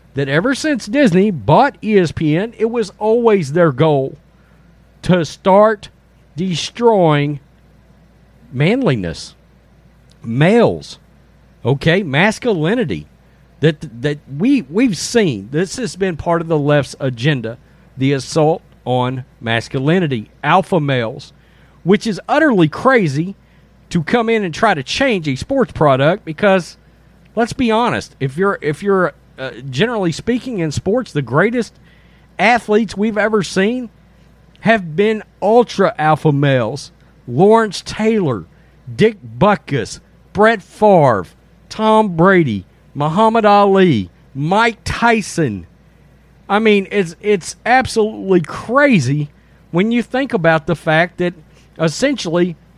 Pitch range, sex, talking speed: 155-220 Hz, male, 115 wpm